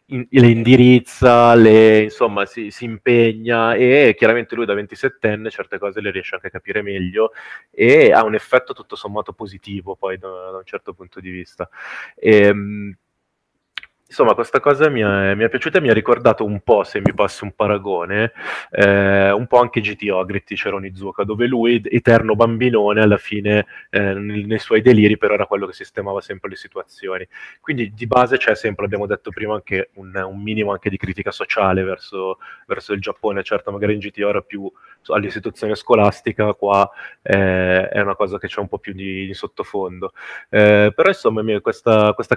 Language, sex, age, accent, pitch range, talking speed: Italian, male, 20-39, native, 95-115 Hz, 180 wpm